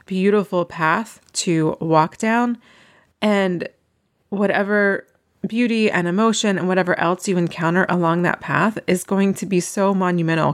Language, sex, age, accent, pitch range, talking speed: English, female, 30-49, American, 165-200 Hz, 135 wpm